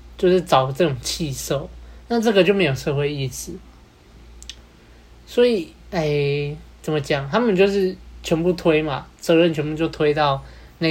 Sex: male